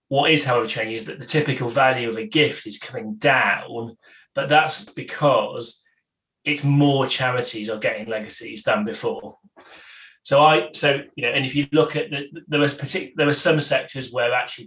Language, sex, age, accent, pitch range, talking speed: English, male, 20-39, British, 115-145 Hz, 190 wpm